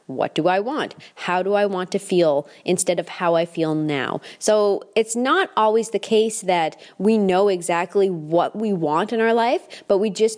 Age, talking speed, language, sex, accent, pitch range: 20-39, 200 wpm, English, female, American, 170-210 Hz